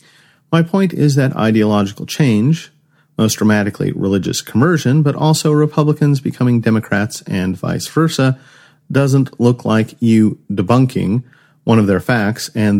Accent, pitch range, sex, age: American, 105-155 Hz, male, 40-59